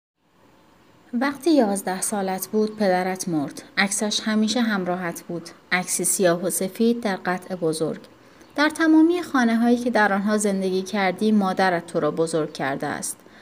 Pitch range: 180-235 Hz